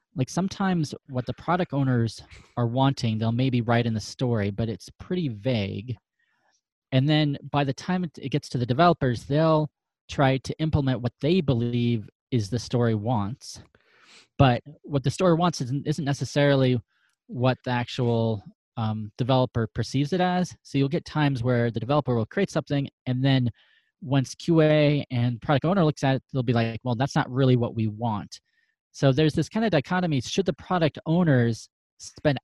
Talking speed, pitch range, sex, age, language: 180 wpm, 120-155 Hz, male, 20-39, English